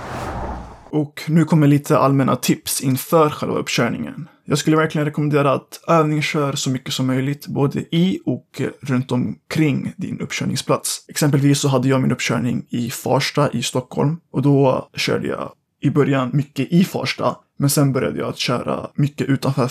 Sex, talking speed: male, 165 wpm